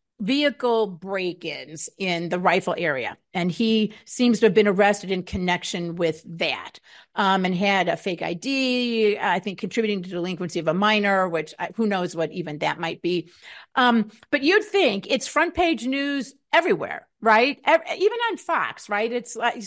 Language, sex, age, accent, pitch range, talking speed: English, female, 50-69, American, 205-315 Hz, 175 wpm